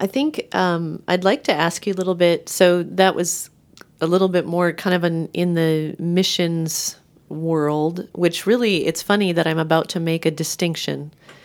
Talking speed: 190 wpm